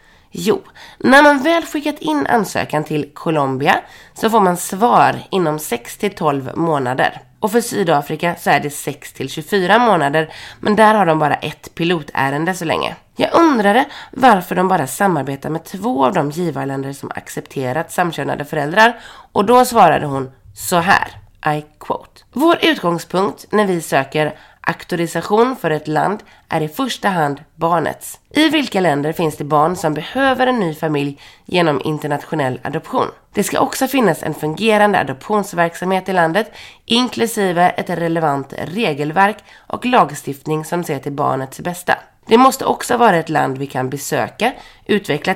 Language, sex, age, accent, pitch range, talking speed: Swedish, female, 30-49, native, 150-210 Hz, 150 wpm